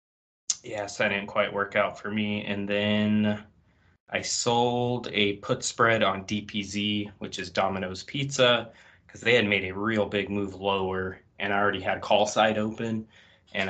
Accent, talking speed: American, 165 wpm